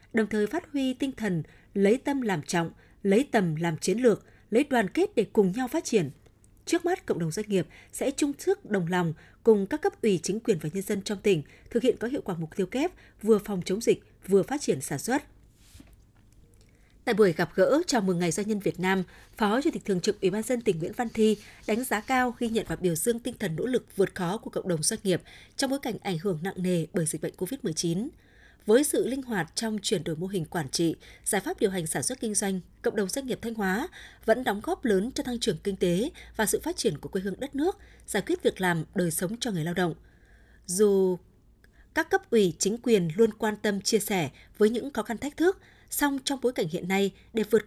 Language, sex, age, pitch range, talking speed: Vietnamese, female, 20-39, 180-245 Hz, 245 wpm